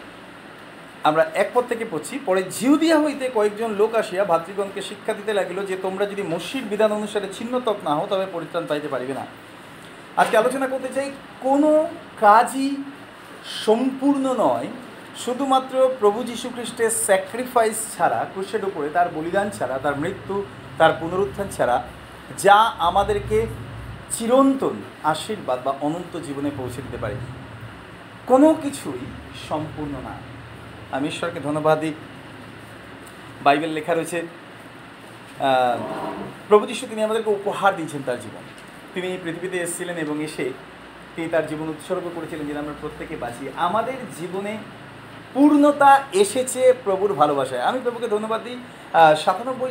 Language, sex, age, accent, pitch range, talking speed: Bengali, male, 40-59, native, 150-240 Hz, 115 wpm